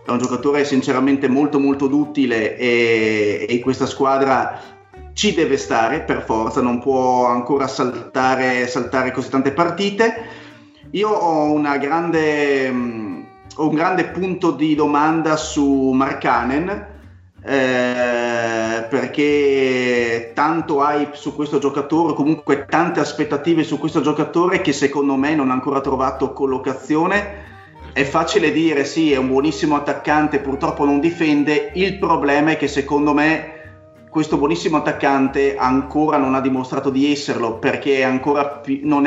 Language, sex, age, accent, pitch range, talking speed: Italian, male, 30-49, native, 130-150 Hz, 130 wpm